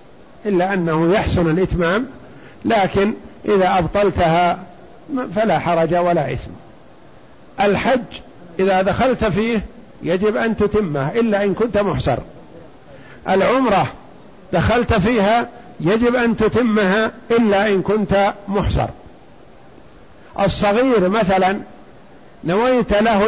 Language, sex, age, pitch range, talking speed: Arabic, male, 50-69, 175-215 Hz, 95 wpm